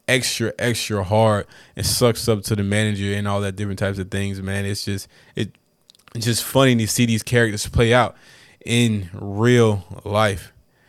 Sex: male